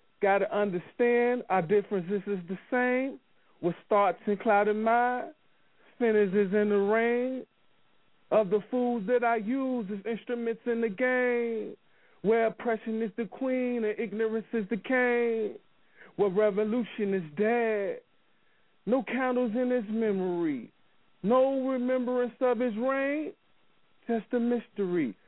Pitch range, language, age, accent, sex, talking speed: 210-250 Hz, English, 40-59, American, male, 135 wpm